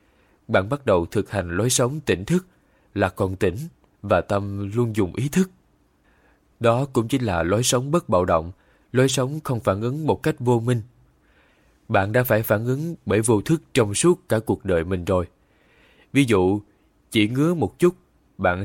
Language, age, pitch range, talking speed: Vietnamese, 20-39, 95-130 Hz, 185 wpm